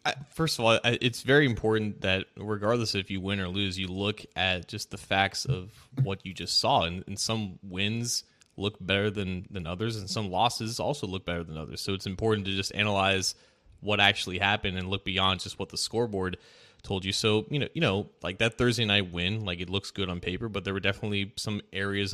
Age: 20-39